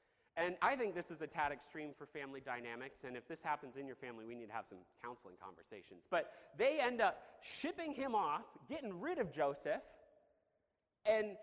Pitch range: 160-240 Hz